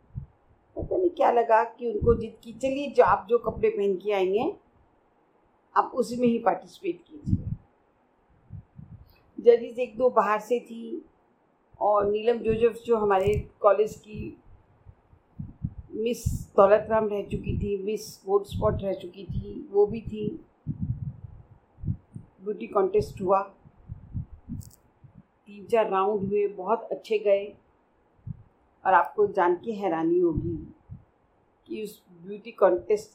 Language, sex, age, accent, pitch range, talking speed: Hindi, female, 50-69, native, 195-250 Hz, 125 wpm